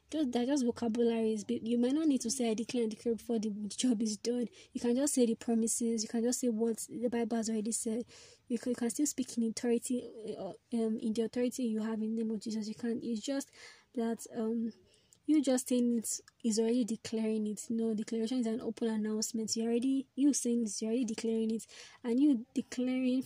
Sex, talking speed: female, 230 wpm